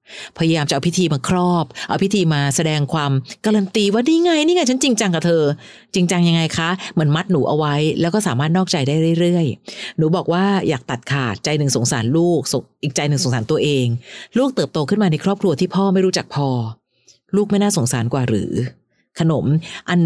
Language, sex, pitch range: Thai, female, 140-185 Hz